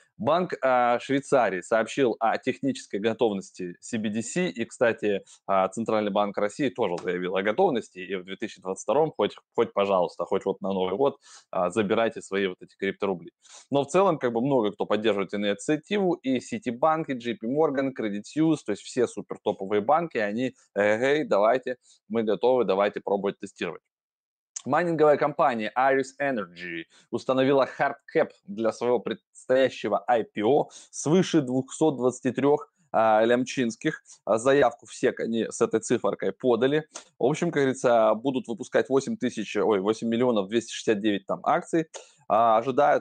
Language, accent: Russian, native